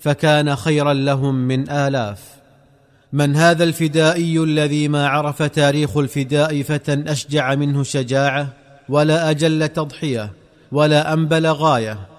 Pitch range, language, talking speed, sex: 140-155 Hz, Arabic, 110 wpm, male